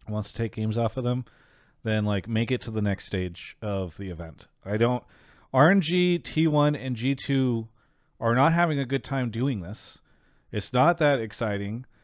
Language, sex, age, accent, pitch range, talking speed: English, male, 40-59, American, 110-145 Hz, 180 wpm